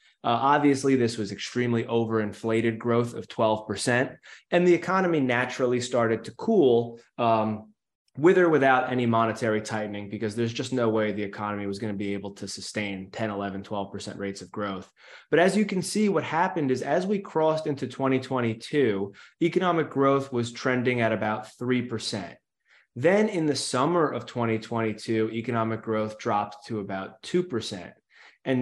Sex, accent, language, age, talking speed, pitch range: male, American, English, 20-39, 160 wpm, 110-130 Hz